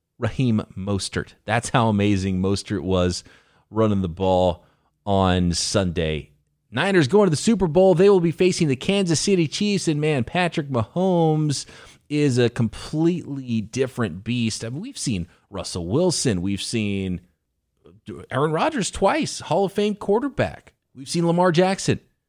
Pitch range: 100-150 Hz